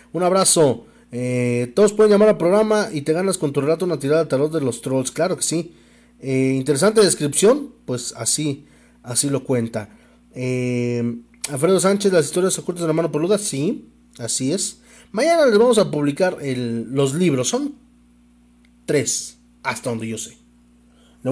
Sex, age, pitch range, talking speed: male, 30-49, 105-175 Hz, 170 wpm